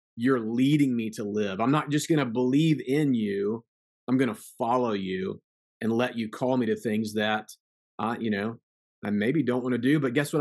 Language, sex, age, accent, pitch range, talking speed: English, male, 30-49, American, 120-155 Hz, 220 wpm